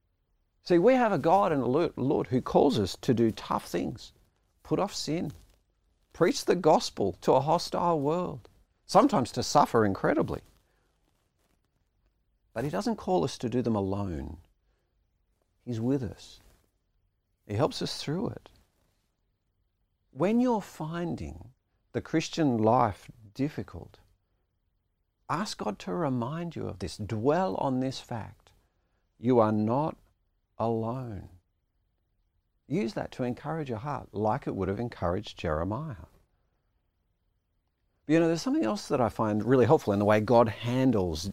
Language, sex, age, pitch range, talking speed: English, male, 50-69, 90-135 Hz, 140 wpm